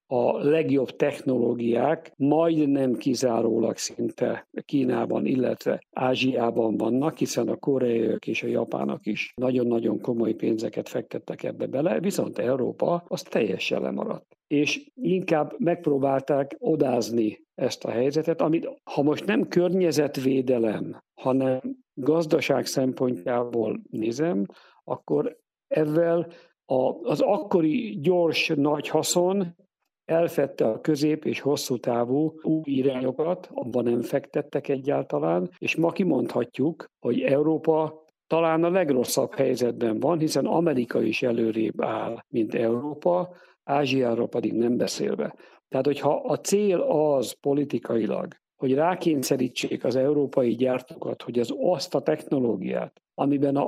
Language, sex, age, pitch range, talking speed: Hungarian, male, 50-69, 125-160 Hz, 115 wpm